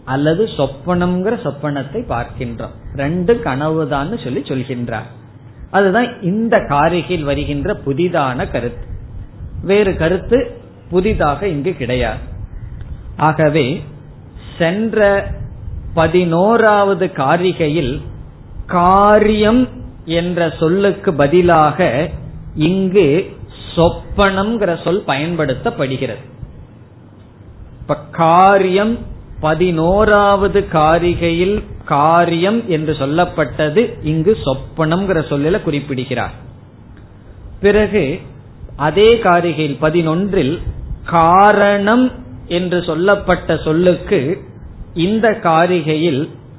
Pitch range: 135-185 Hz